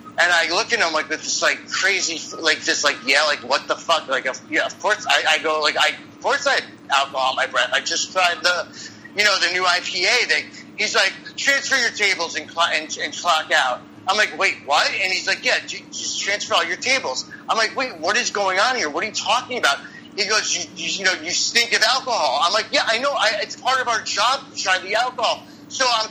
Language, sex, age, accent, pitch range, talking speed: English, male, 30-49, American, 160-225 Hz, 250 wpm